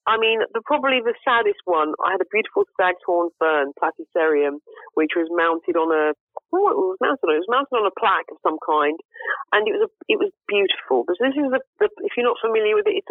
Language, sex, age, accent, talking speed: English, female, 40-59, British, 240 wpm